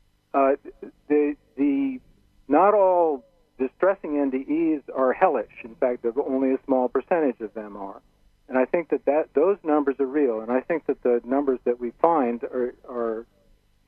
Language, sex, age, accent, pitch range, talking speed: English, male, 50-69, American, 115-140 Hz, 170 wpm